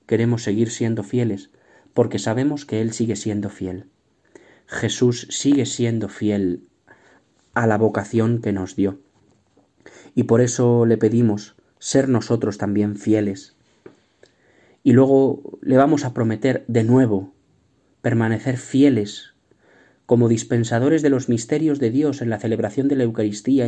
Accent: Spanish